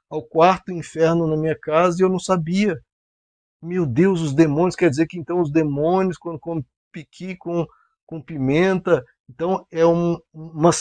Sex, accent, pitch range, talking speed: male, Brazilian, 135-190 Hz, 160 wpm